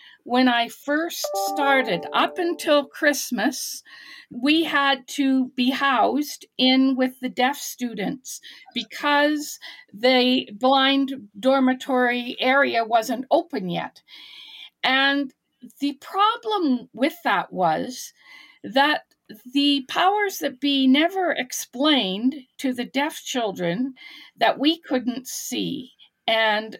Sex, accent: female, American